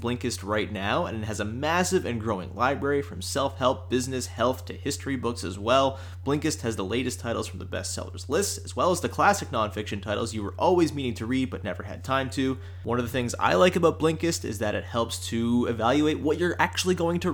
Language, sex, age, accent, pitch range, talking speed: English, male, 30-49, American, 100-140 Hz, 230 wpm